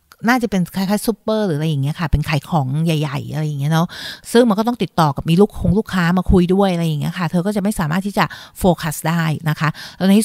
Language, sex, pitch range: Thai, female, 160-200 Hz